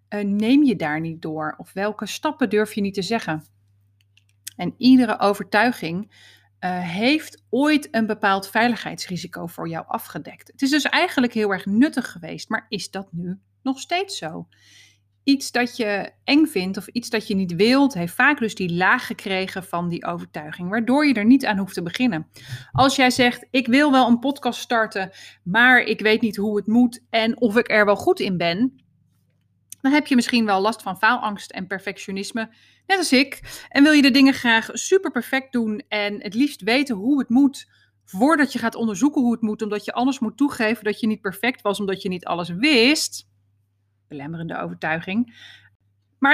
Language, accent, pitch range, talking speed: Dutch, Dutch, 185-255 Hz, 190 wpm